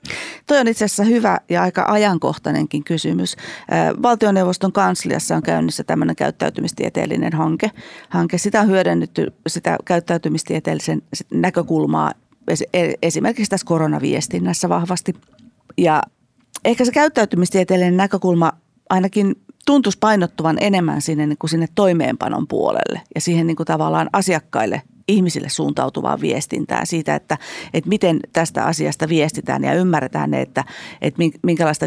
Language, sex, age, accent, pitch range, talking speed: Finnish, female, 40-59, native, 155-200 Hz, 110 wpm